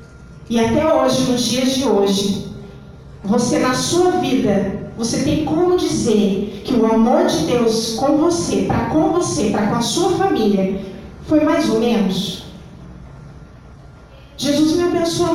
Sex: female